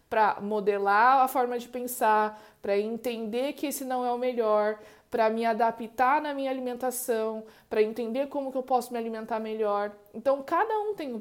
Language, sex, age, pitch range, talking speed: Portuguese, female, 20-39, 215-255 Hz, 180 wpm